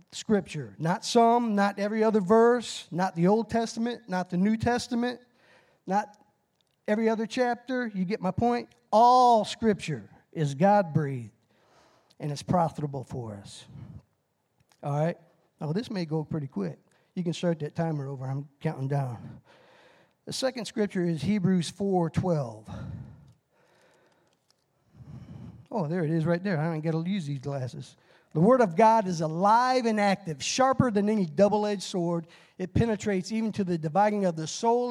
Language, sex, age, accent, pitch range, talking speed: English, male, 50-69, American, 165-230 Hz, 160 wpm